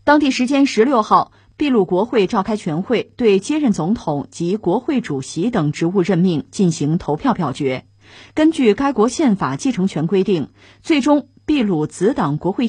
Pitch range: 165-240 Hz